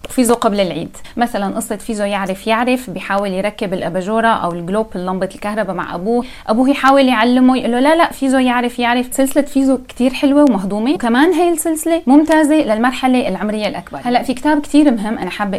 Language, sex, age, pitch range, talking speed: Arabic, female, 20-39, 210-265 Hz, 175 wpm